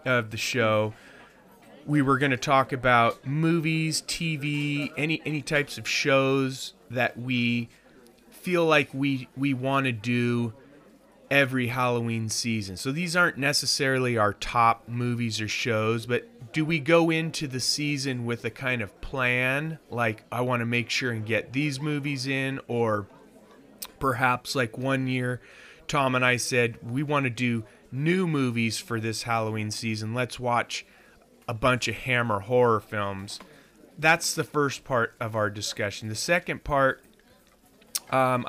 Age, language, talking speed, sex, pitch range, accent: 30-49, English, 155 wpm, male, 115-140 Hz, American